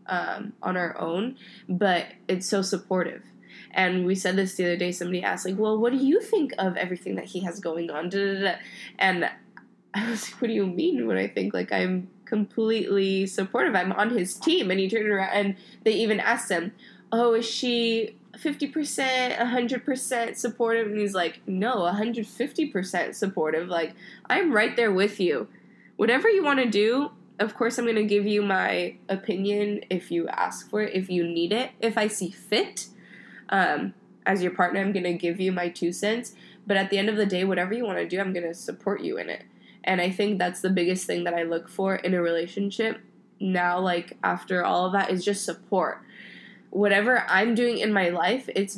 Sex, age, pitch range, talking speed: female, 20-39, 180-225 Hz, 200 wpm